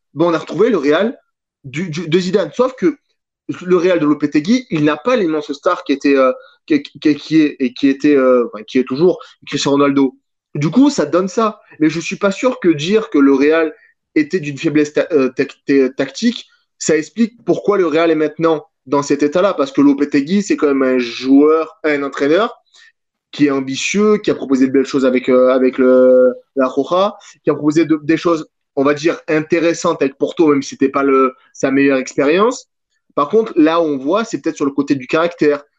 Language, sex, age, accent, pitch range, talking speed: French, male, 20-39, French, 140-180 Hz, 210 wpm